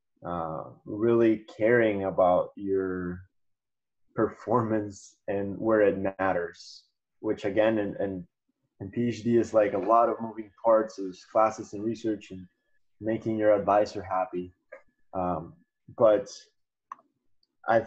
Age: 20-39